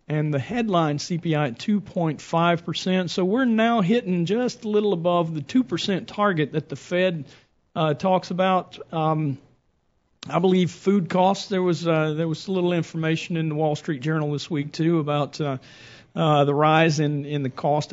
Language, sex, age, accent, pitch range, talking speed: English, male, 50-69, American, 140-175 Hz, 185 wpm